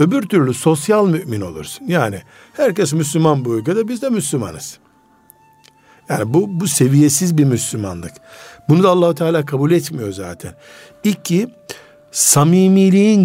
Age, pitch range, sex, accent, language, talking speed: 60-79, 135-180 Hz, male, native, Turkish, 125 wpm